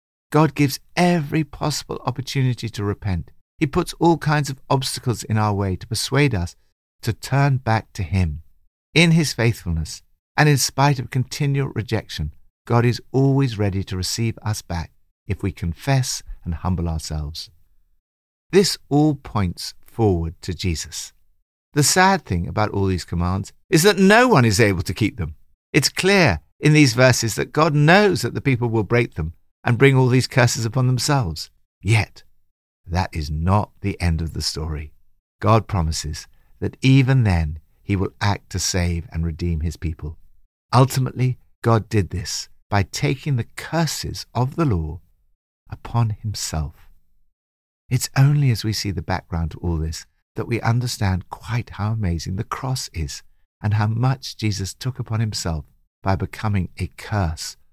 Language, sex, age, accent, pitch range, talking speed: English, male, 50-69, British, 85-130 Hz, 160 wpm